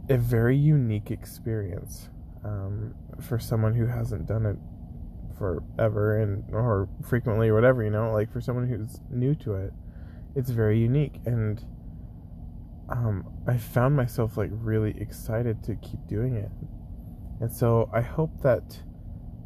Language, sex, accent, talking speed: English, male, American, 140 wpm